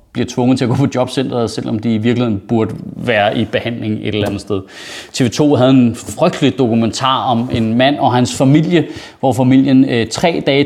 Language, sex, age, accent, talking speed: Danish, male, 30-49, native, 190 wpm